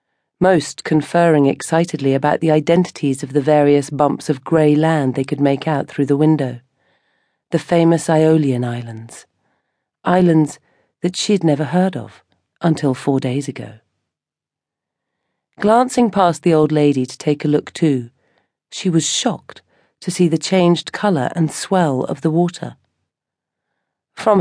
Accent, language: British, English